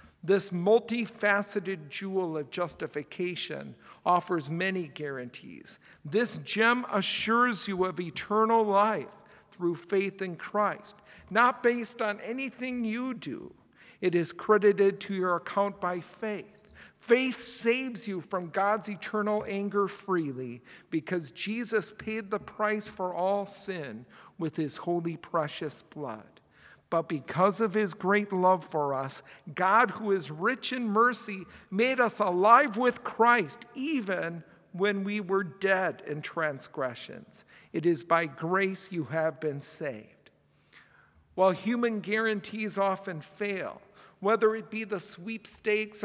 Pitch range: 180-220 Hz